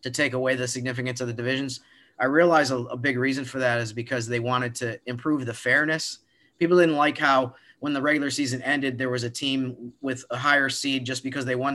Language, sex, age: English, male, 30-49